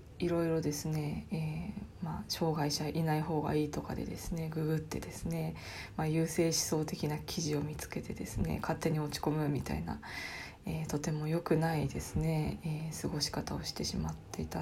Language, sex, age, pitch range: Japanese, female, 20-39, 150-180 Hz